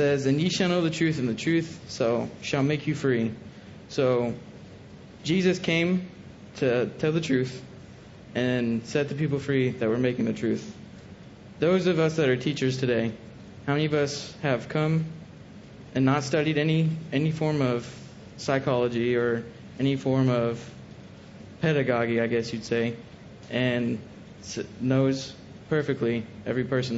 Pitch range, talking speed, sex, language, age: 120-155 Hz, 145 wpm, male, English, 20-39